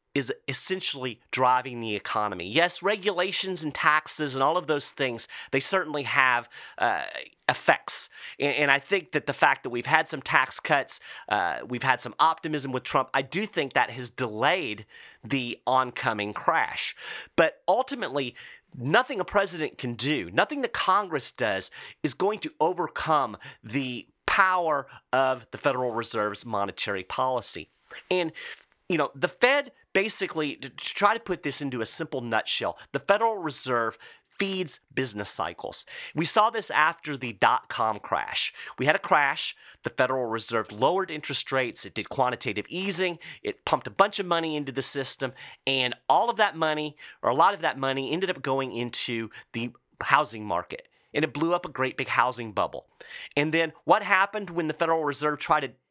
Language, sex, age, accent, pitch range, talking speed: English, male, 30-49, American, 125-180 Hz, 170 wpm